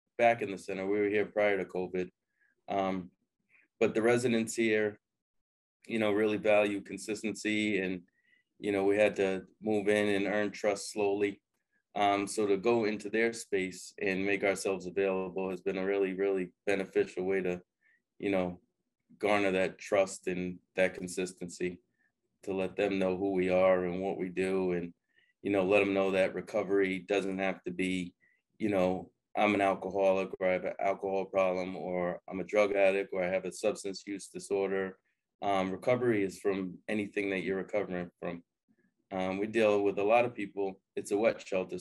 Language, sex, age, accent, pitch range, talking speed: English, male, 30-49, American, 95-105 Hz, 180 wpm